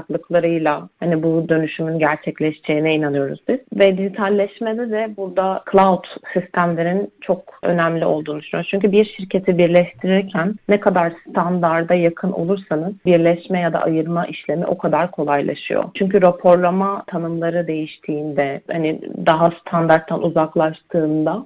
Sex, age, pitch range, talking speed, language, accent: female, 30-49, 160-190 Hz, 115 wpm, Turkish, native